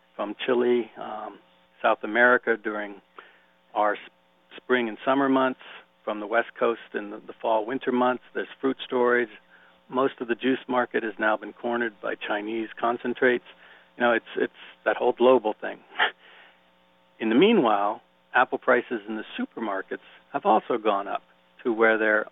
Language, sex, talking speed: English, male, 160 wpm